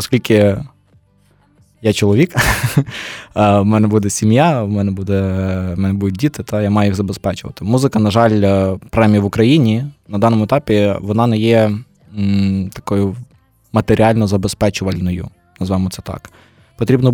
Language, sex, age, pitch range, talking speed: Ukrainian, male, 20-39, 100-115 Hz, 130 wpm